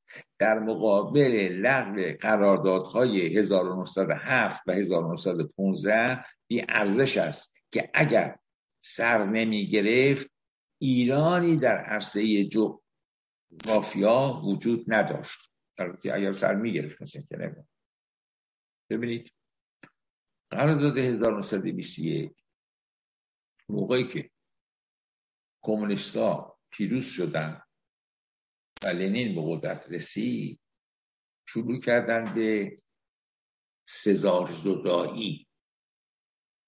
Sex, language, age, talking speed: male, Persian, 60-79, 75 wpm